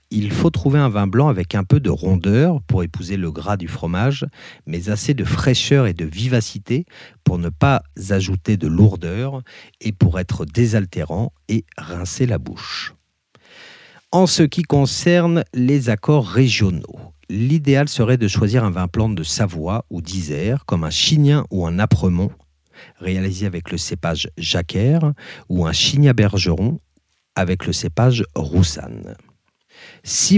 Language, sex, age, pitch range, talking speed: French, male, 40-59, 95-130 Hz, 150 wpm